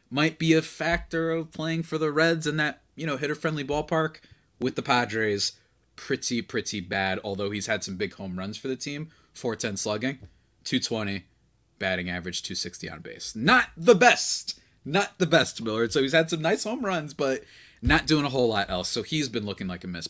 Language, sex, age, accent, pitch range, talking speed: English, male, 30-49, American, 100-160 Hz, 200 wpm